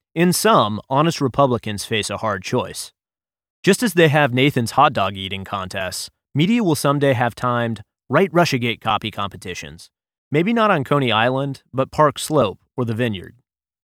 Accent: American